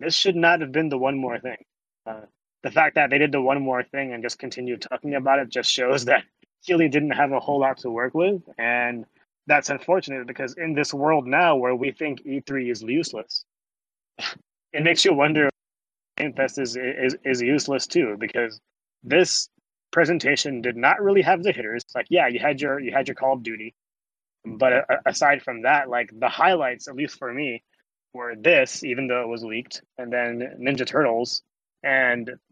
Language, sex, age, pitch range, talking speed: English, male, 20-39, 125-150 Hz, 195 wpm